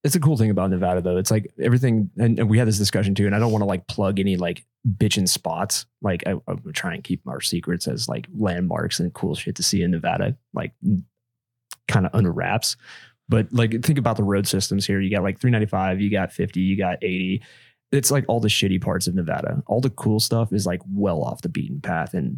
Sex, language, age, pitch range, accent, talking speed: male, English, 20-39, 100-120 Hz, American, 235 wpm